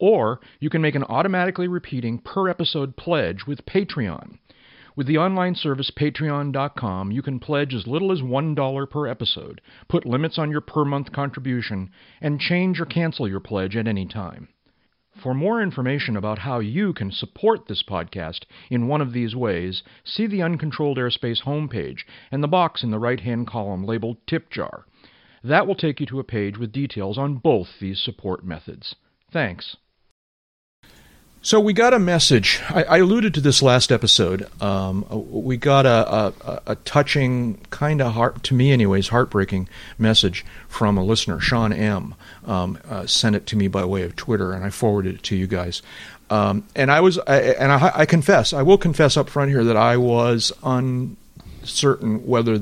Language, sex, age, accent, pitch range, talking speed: English, male, 40-59, American, 105-145 Hz, 175 wpm